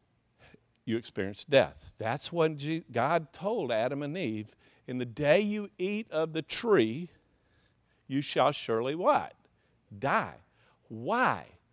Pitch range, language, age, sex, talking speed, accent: 130-185 Hz, English, 50-69, male, 120 wpm, American